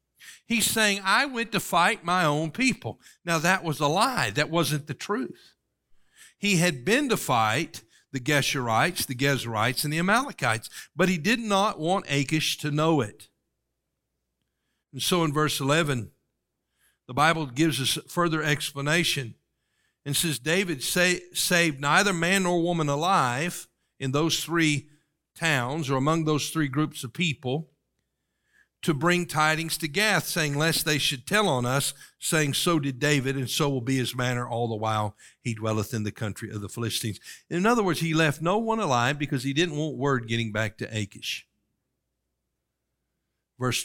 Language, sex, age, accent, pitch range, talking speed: English, male, 50-69, American, 120-165 Hz, 165 wpm